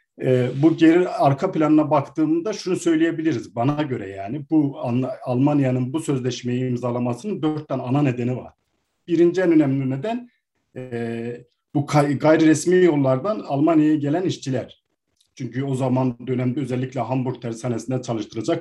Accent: native